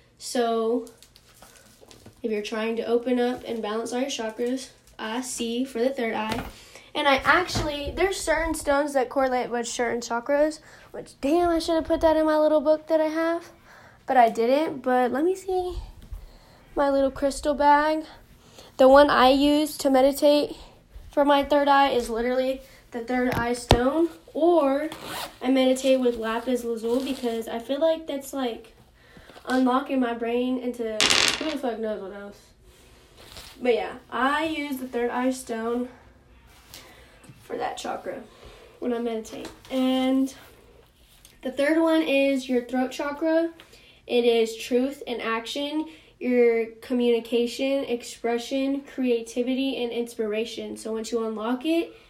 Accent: American